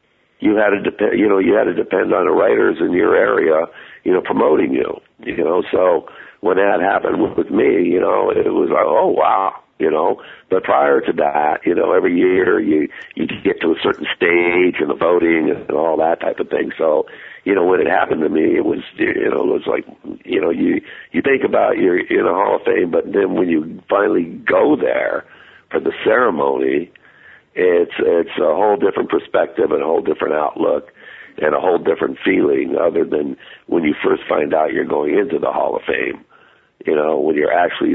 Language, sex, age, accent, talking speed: English, male, 60-79, American, 215 wpm